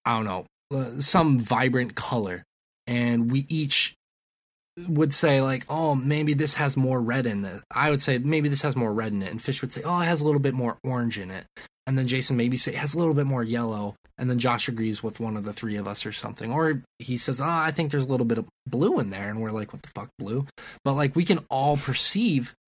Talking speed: 255 wpm